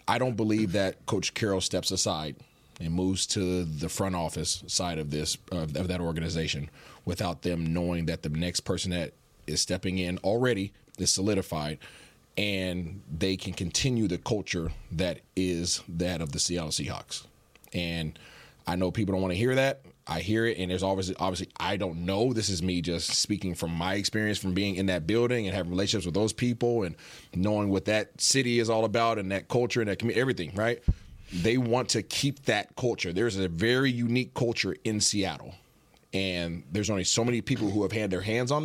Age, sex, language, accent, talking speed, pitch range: 30-49, male, English, American, 195 wpm, 90-115 Hz